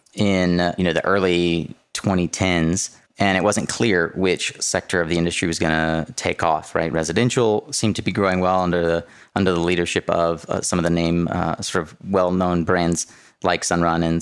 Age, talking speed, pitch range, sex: 30-49, 195 wpm, 85-95 Hz, male